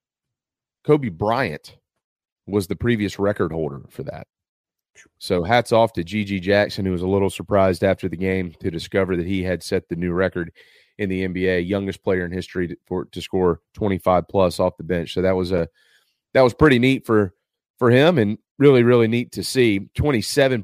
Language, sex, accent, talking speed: English, male, American, 185 wpm